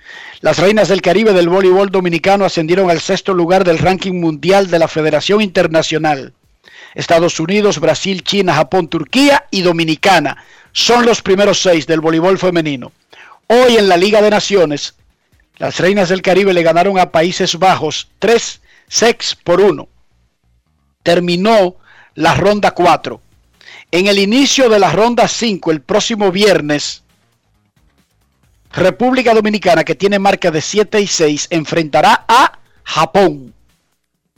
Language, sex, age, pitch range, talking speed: Spanish, male, 50-69, 165-210 Hz, 135 wpm